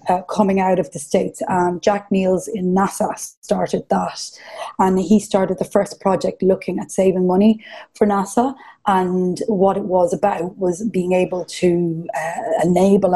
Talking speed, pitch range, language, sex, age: 165 wpm, 185-225 Hz, English, female, 20-39